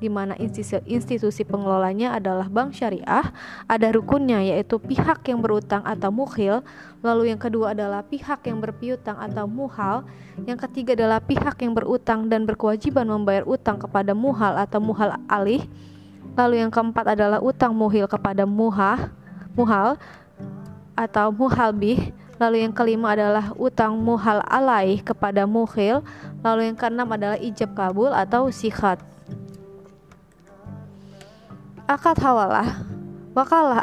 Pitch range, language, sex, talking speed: 200-240 Hz, Indonesian, female, 125 wpm